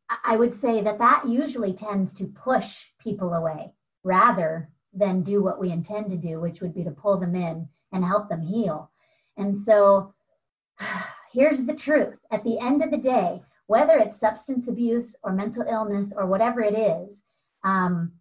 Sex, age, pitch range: female, 40-59, 190-245 Hz